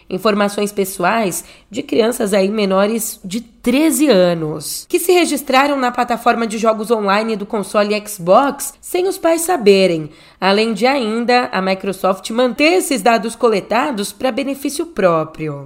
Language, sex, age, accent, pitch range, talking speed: Portuguese, female, 10-29, Brazilian, 190-240 Hz, 135 wpm